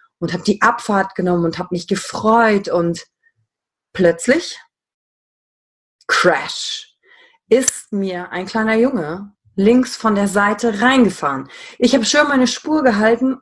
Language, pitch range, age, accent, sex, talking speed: German, 170-245 Hz, 30-49, German, female, 125 wpm